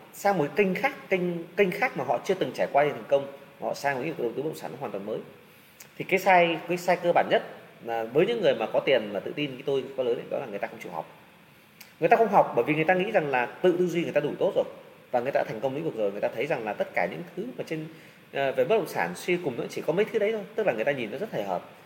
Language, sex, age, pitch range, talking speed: Vietnamese, male, 20-39, 160-215 Hz, 320 wpm